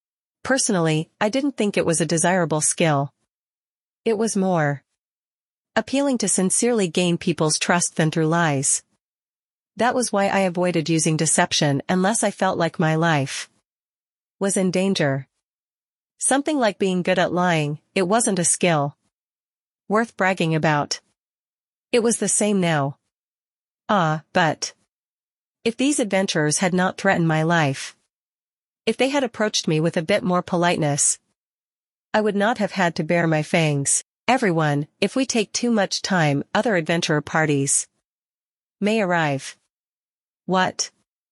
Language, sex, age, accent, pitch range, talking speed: English, female, 40-59, American, 160-205 Hz, 140 wpm